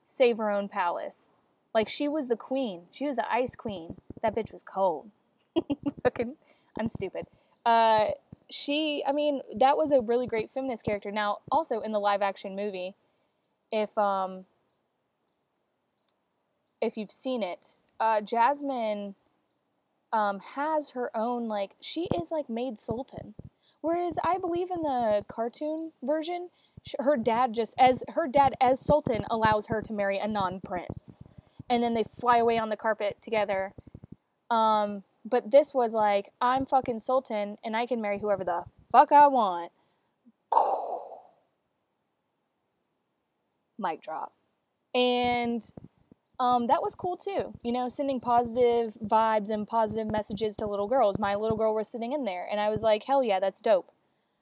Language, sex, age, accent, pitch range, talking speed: English, female, 20-39, American, 210-270 Hz, 150 wpm